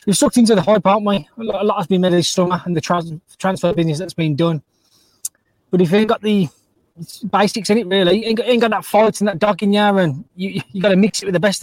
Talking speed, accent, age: 290 wpm, British, 20-39